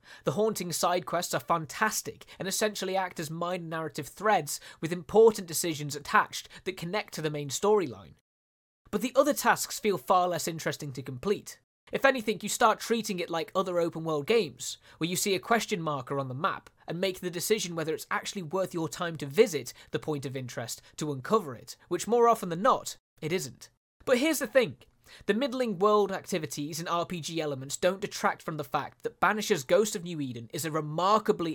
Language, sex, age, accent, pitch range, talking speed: Spanish, male, 20-39, British, 155-205 Hz, 195 wpm